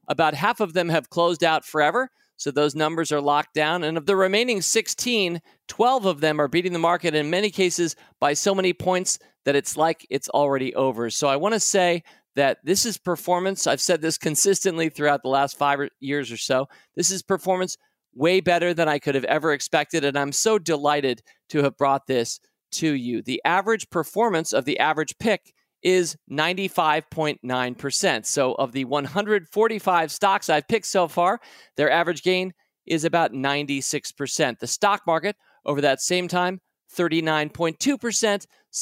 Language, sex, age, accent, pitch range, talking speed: English, male, 40-59, American, 145-185 Hz, 175 wpm